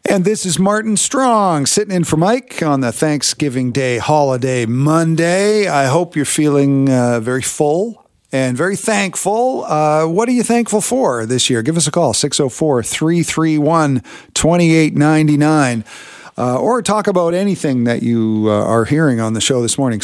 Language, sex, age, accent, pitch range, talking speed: English, male, 50-69, American, 130-175 Hz, 155 wpm